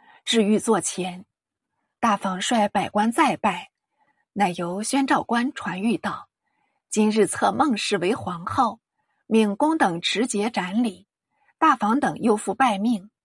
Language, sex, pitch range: Chinese, female, 200-265 Hz